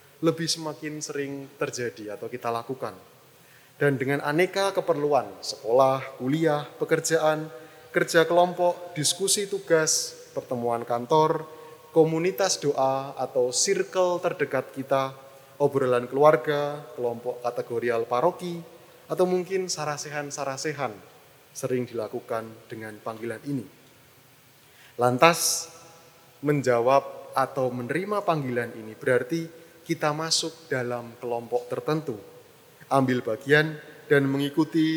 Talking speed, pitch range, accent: 95 wpm, 125-160 Hz, native